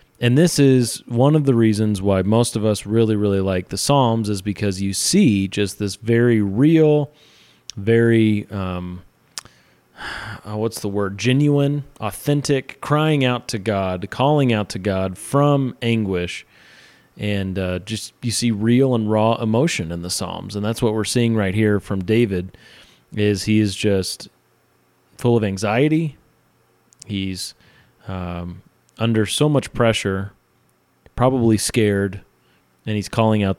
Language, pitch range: English, 100-130 Hz